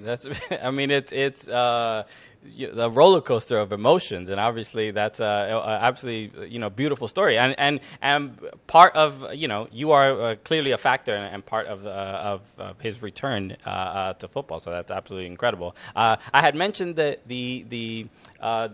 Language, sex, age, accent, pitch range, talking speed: English, male, 20-39, American, 105-145 Hz, 190 wpm